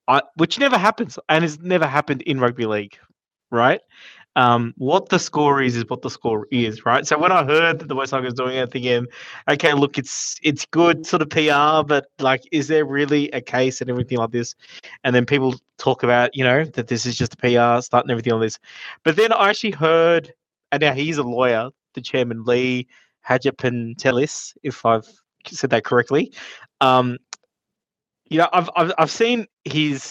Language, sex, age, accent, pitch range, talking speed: English, male, 20-39, Australian, 125-160 Hz, 190 wpm